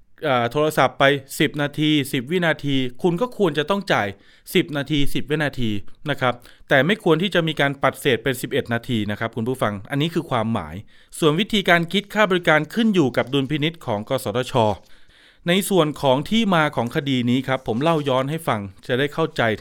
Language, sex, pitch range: Thai, male, 125-165 Hz